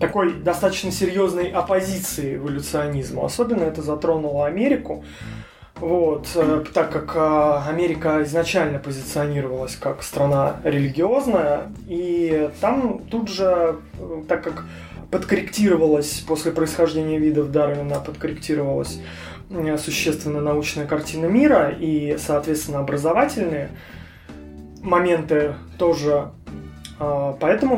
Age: 20-39